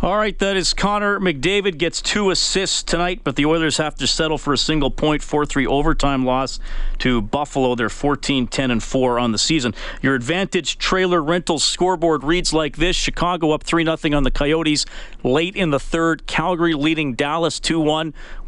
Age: 40-59